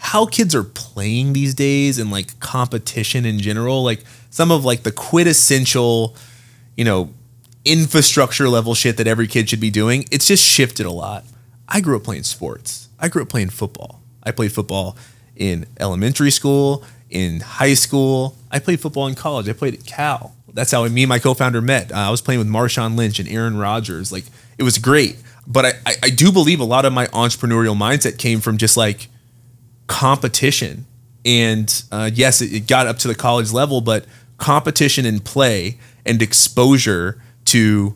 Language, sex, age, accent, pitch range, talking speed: English, male, 30-49, American, 115-135 Hz, 185 wpm